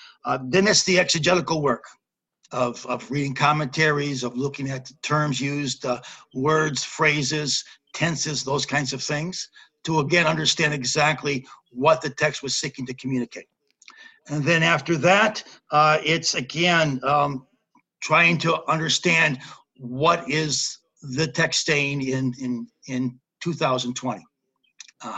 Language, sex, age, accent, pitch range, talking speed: English, male, 60-79, American, 135-170 Hz, 130 wpm